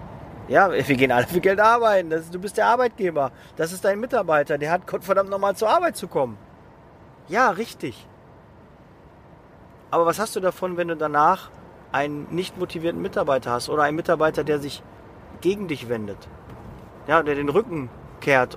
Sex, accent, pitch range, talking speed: male, German, 135-180 Hz, 175 wpm